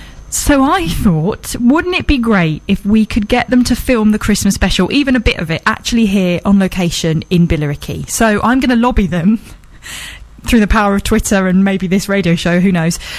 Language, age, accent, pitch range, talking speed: English, 20-39, British, 175-220 Hz, 210 wpm